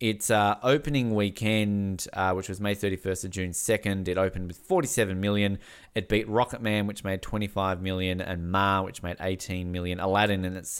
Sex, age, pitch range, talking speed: male, 20-39, 90-110 Hz, 205 wpm